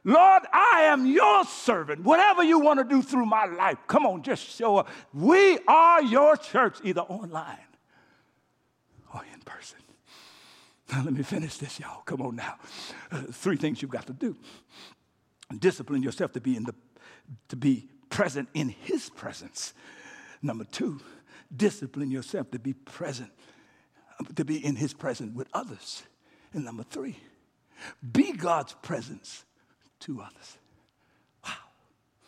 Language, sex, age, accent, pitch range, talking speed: English, male, 60-79, American, 140-220 Hz, 145 wpm